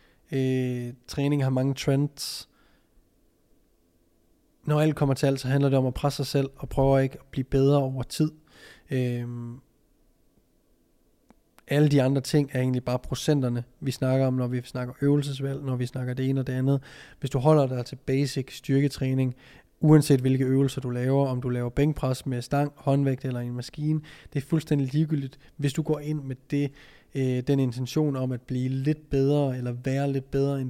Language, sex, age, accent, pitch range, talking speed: Danish, male, 20-39, native, 130-145 Hz, 185 wpm